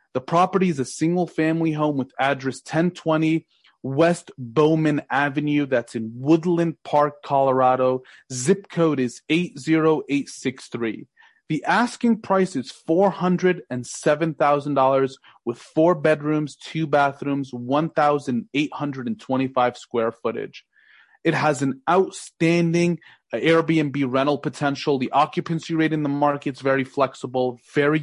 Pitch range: 130-160 Hz